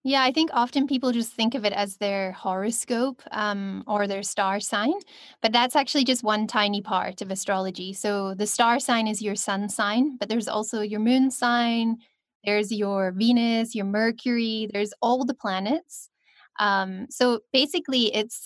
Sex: female